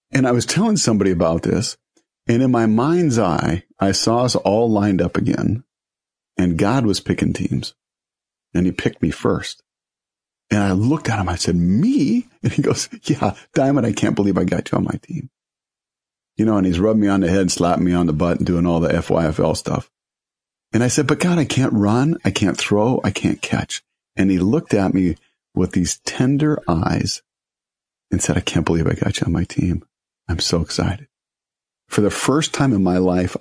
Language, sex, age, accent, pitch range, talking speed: English, male, 50-69, American, 90-120 Hz, 210 wpm